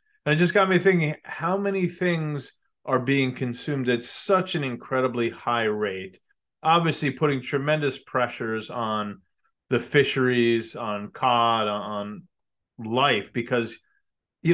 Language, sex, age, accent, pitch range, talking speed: English, male, 30-49, American, 120-155 Hz, 130 wpm